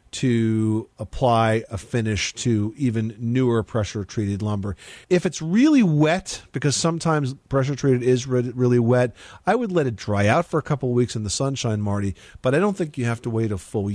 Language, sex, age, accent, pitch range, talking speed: English, male, 40-59, American, 110-130 Hz, 195 wpm